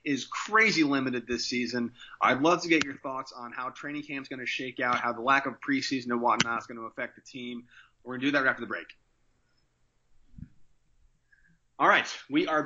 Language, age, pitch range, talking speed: English, 30-49, 120-160 Hz, 220 wpm